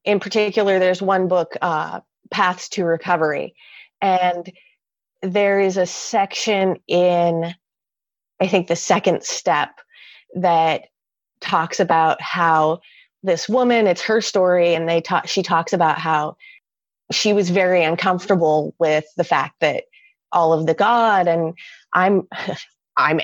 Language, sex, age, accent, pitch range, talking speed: English, female, 30-49, American, 165-200 Hz, 130 wpm